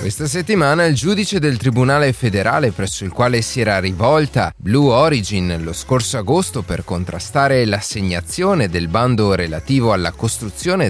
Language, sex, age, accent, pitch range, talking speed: Italian, male, 30-49, native, 100-150 Hz, 145 wpm